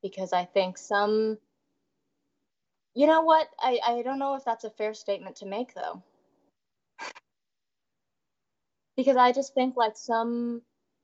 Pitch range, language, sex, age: 180-260 Hz, English, female, 20-39